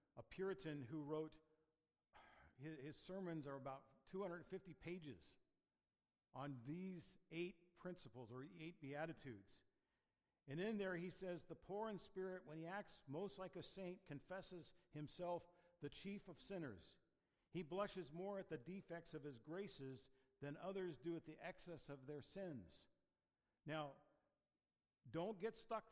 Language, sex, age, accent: English, male, 50-69, American